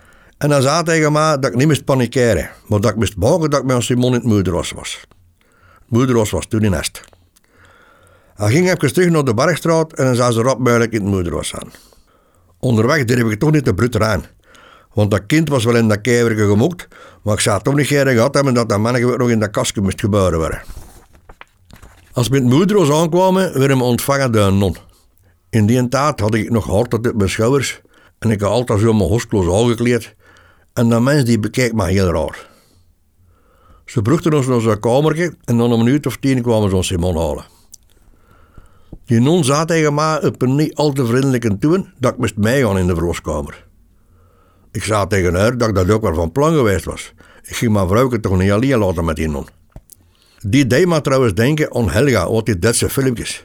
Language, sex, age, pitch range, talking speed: Dutch, male, 60-79, 95-135 Hz, 210 wpm